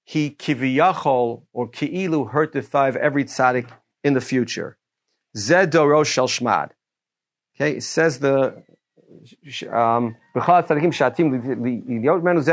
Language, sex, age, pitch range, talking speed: English, male, 40-59, 130-160 Hz, 90 wpm